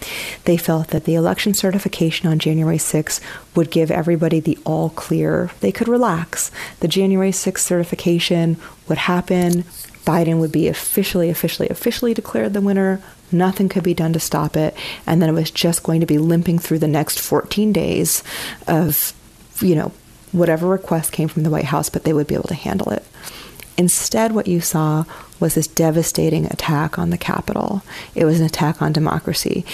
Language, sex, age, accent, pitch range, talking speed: English, female, 30-49, American, 160-195 Hz, 180 wpm